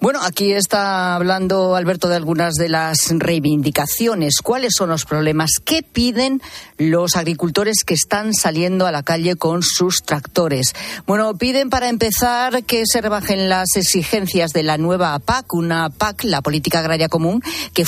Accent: Spanish